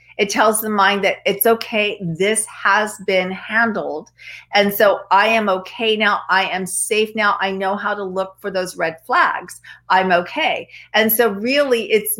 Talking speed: 175 wpm